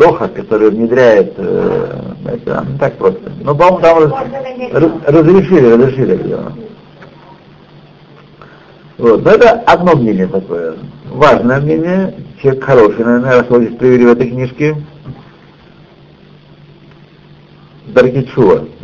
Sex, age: male, 60-79